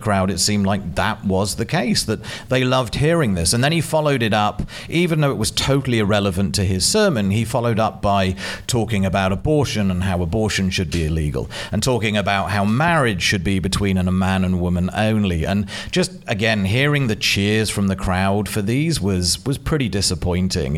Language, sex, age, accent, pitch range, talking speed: English, male, 40-59, British, 95-125 Hz, 200 wpm